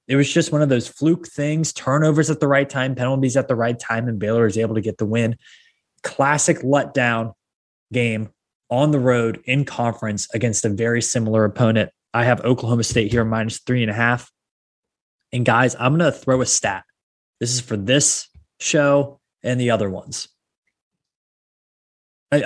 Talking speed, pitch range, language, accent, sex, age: 180 wpm, 115-140 Hz, English, American, male, 20-39